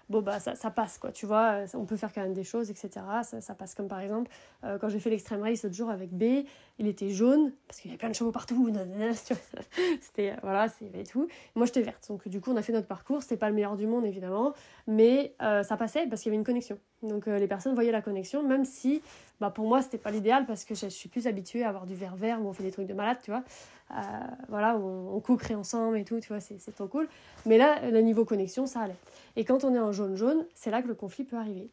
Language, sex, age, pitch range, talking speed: French, female, 20-39, 205-250 Hz, 280 wpm